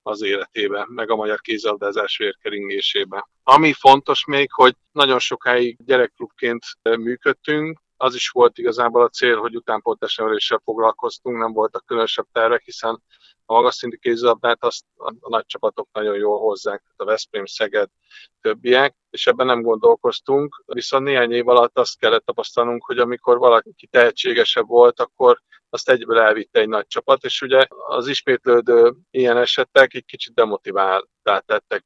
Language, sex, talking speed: Hungarian, male, 140 wpm